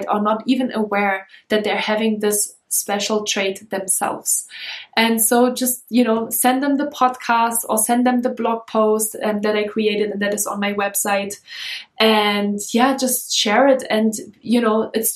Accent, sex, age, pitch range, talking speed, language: German, female, 20-39, 205-235 Hz, 180 wpm, English